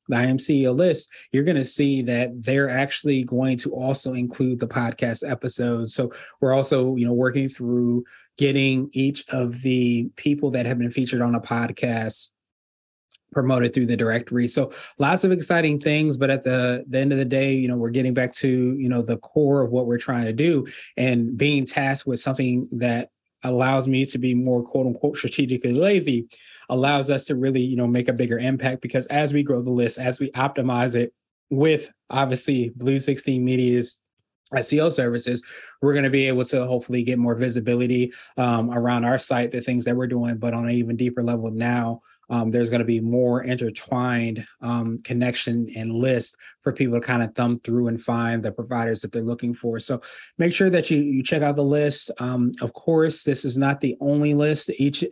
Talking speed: 200 wpm